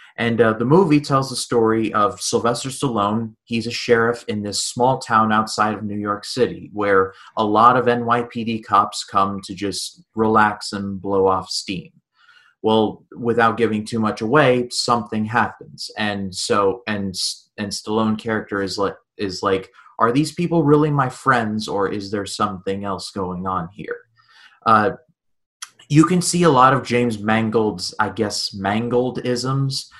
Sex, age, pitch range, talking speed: male, 30-49, 105-125 Hz, 160 wpm